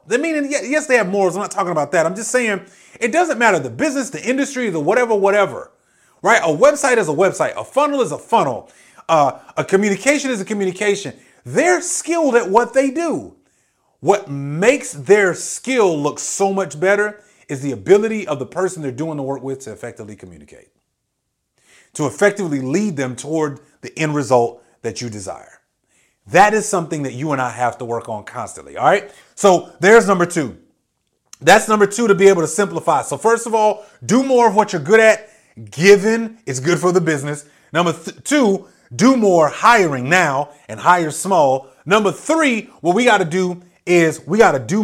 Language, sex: English, male